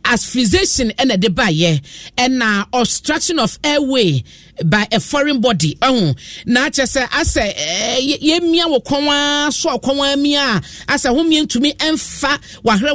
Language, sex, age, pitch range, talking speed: English, male, 40-59, 200-275 Hz, 160 wpm